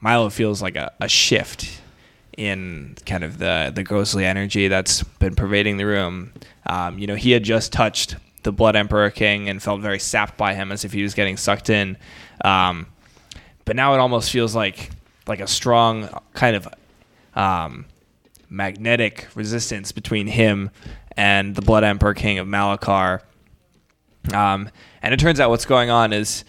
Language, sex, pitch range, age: English, male, 100-110 Hz, 10-29